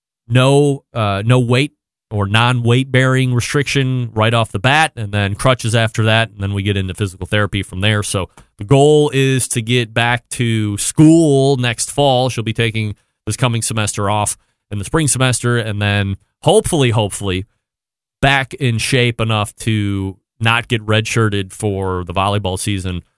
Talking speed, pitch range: 165 wpm, 105-135 Hz